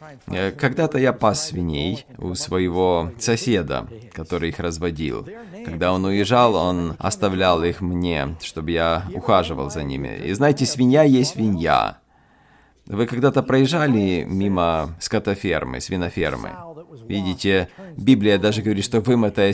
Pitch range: 95-130 Hz